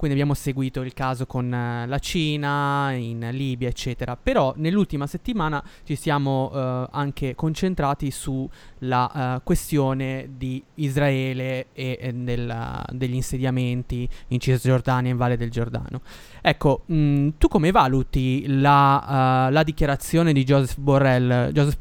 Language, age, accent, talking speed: Italian, 20-39, native, 120 wpm